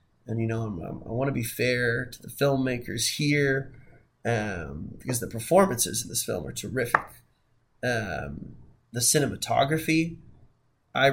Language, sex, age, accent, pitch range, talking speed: English, male, 20-39, American, 115-135 Hz, 135 wpm